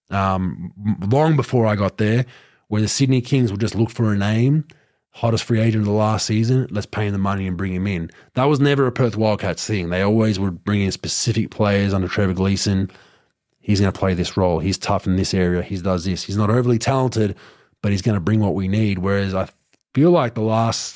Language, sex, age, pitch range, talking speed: English, male, 20-39, 95-115 Hz, 230 wpm